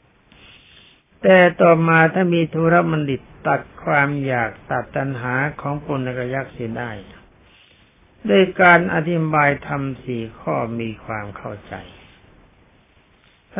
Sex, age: male, 60-79